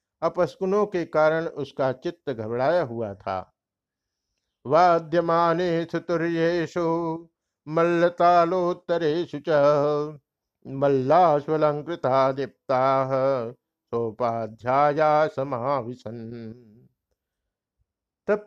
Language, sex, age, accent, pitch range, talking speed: Hindi, male, 60-79, native, 130-165 Hz, 40 wpm